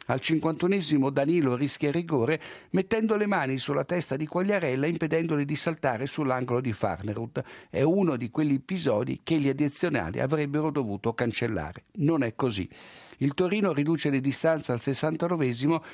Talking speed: 150 wpm